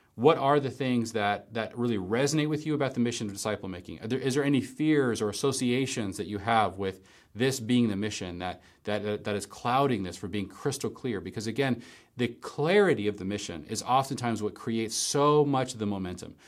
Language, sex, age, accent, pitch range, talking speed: English, male, 30-49, American, 100-130 Hz, 200 wpm